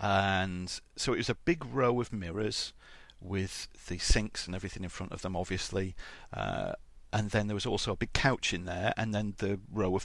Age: 40-59